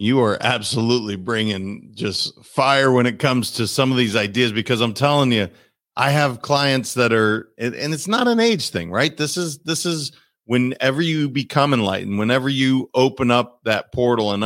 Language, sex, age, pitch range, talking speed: English, male, 40-59, 115-150 Hz, 185 wpm